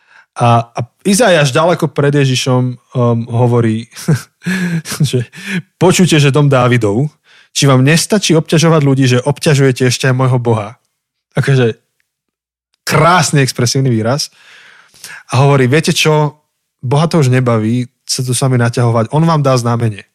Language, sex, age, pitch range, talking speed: Slovak, male, 20-39, 125-155 Hz, 135 wpm